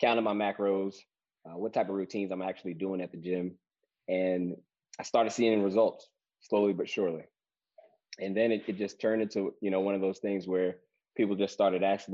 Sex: male